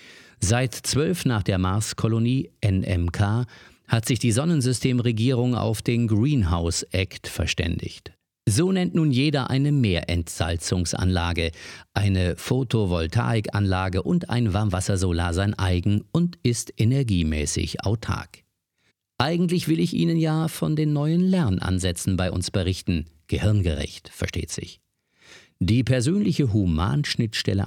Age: 50-69